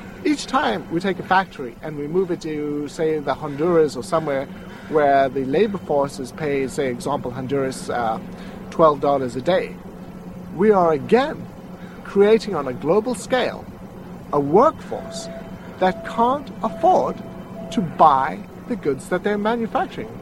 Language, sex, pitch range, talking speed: English, male, 160-220 Hz, 145 wpm